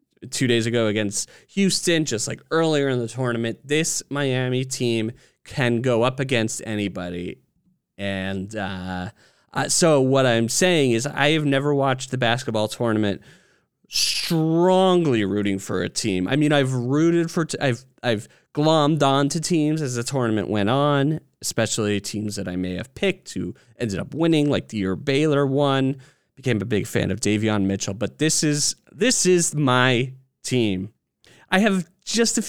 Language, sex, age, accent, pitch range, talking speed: English, male, 30-49, American, 110-145 Hz, 165 wpm